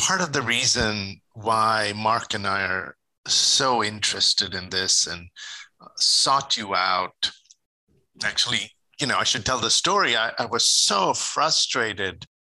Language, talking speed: English, 145 wpm